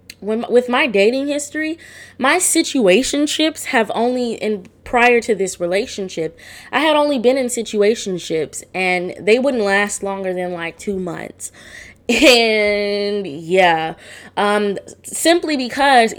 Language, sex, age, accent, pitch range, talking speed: English, female, 20-39, American, 170-220 Hz, 120 wpm